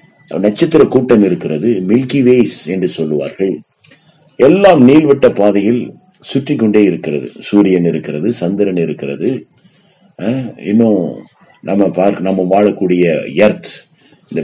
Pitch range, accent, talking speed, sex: 100-150 Hz, native, 65 wpm, male